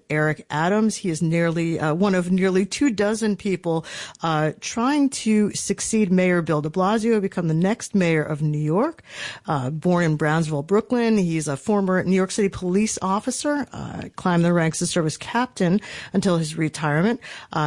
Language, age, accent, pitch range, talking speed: English, 40-59, American, 170-225 Hz, 175 wpm